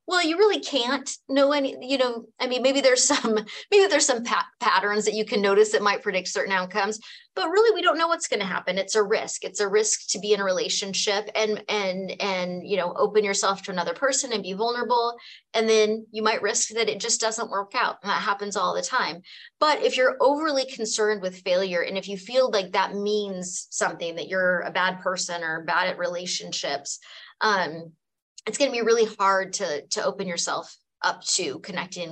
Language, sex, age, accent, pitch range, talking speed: English, female, 30-49, American, 185-255 Hz, 210 wpm